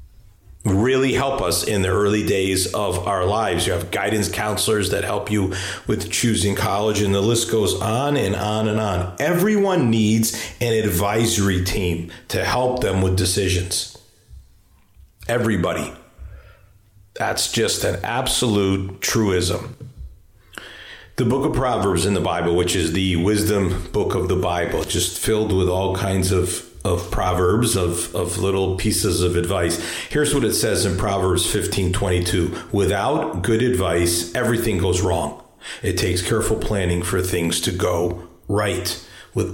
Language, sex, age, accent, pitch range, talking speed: English, male, 40-59, American, 90-110 Hz, 145 wpm